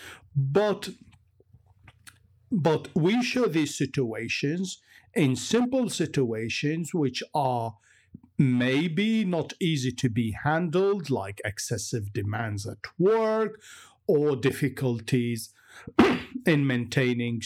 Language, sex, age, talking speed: English, male, 50-69, 90 wpm